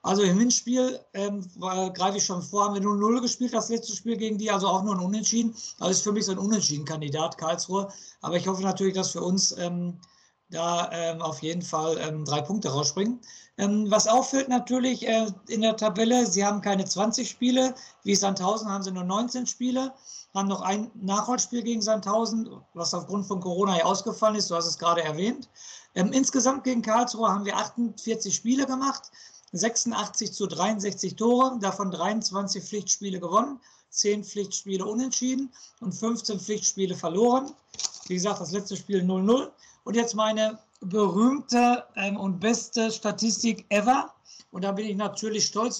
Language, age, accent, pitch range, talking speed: German, 50-69, German, 190-225 Hz, 175 wpm